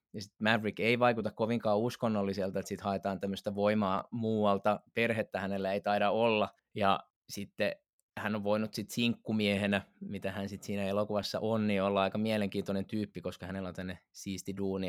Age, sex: 20-39, male